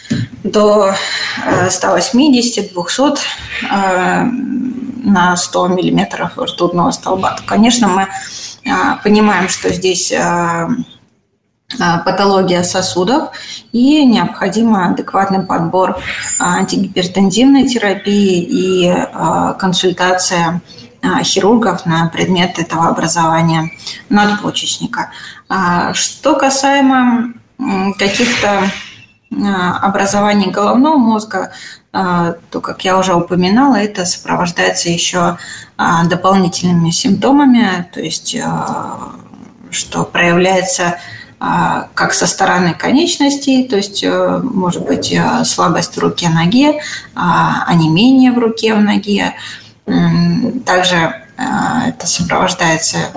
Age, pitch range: 20-39, 175-240 Hz